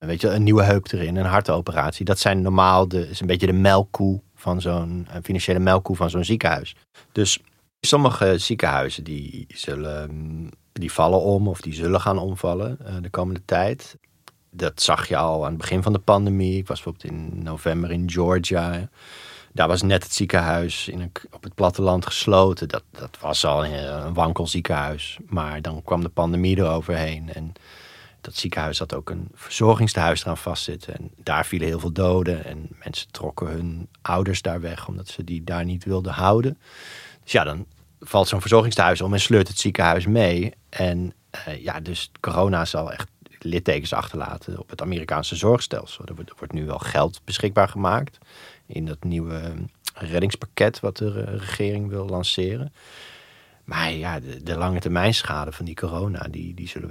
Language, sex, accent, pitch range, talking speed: Dutch, male, Dutch, 85-100 Hz, 175 wpm